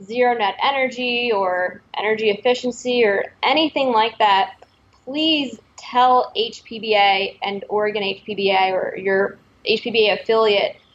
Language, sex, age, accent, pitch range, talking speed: English, female, 20-39, American, 205-245 Hz, 110 wpm